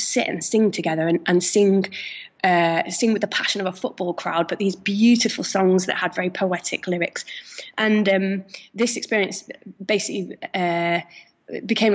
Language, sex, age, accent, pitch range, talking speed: English, female, 20-39, British, 175-205 Hz, 160 wpm